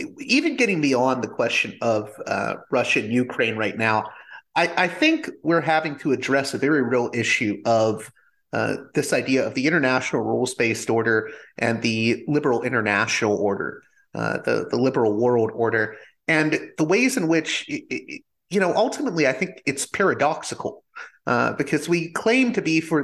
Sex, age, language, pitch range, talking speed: male, 30-49, English, 125-170 Hz, 165 wpm